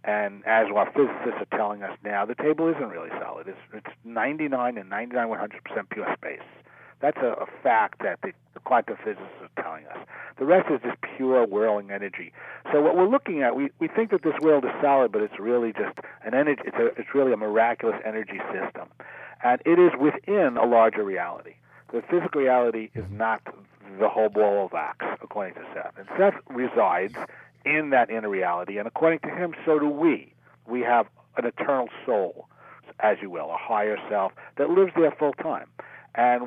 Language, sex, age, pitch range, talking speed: English, male, 40-59, 110-150 Hz, 190 wpm